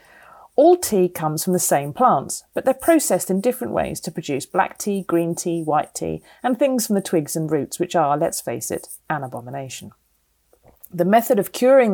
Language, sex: English, female